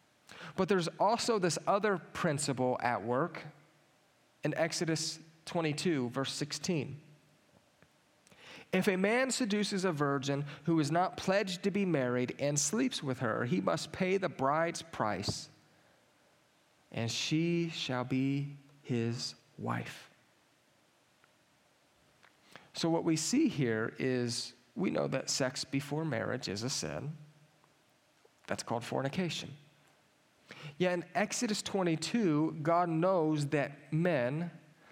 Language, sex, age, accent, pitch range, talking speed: English, male, 40-59, American, 135-170 Hz, 115 wpm